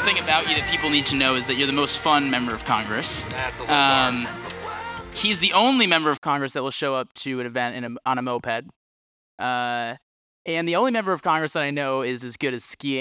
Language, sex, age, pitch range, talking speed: English, male, 20-39, 120-150 Hz, 235 wpm